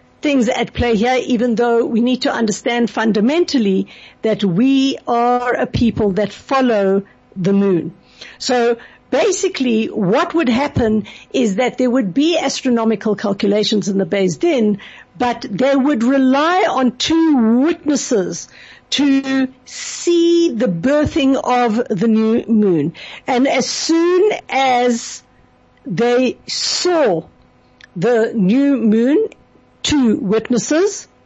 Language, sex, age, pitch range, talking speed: English, female, 60-79, 220-270 Hz, 120 wpm